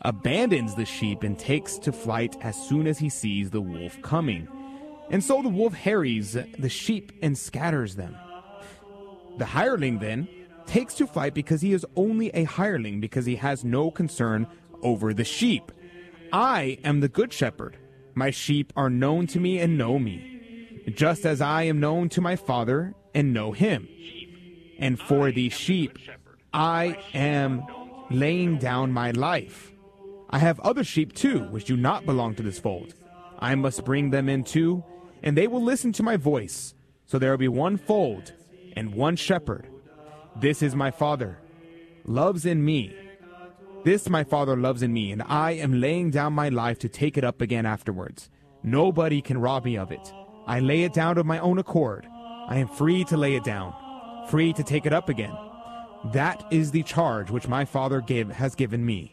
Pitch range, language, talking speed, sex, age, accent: 130-180 Hz, English, 180 wpm, male, 30-49, American